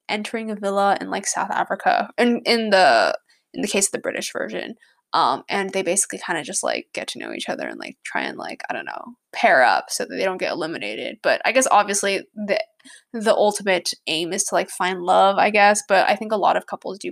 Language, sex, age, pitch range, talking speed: English, female, 10-29, 195-240 Hz, 240 wpm